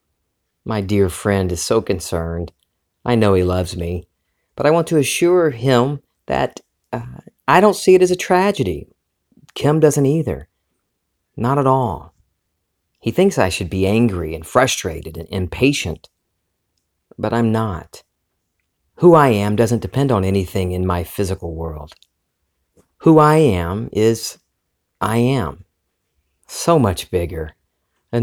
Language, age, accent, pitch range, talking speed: English, 40-59, American, 85-120 Hz, 140 wpm